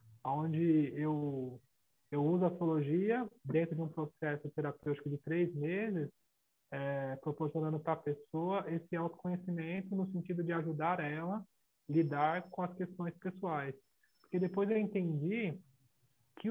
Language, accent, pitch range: Portuguese, Brazilian, 150-180 Hz